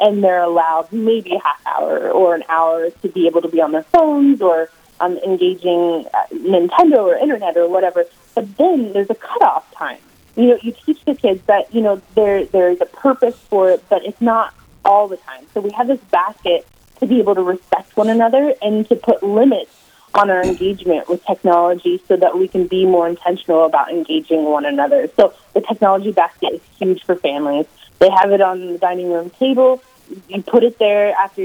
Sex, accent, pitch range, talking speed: female, American, 175-230 Hz, 200 wpm